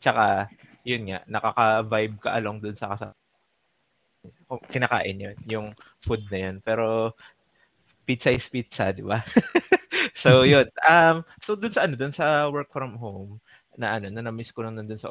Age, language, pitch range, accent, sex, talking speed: 20-39, Filipino, 105-125 Hz, native, male, 165 wpm